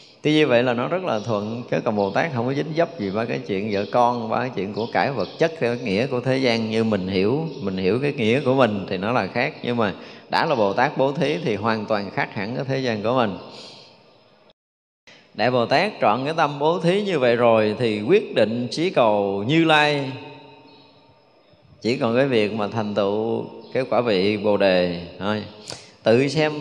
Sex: male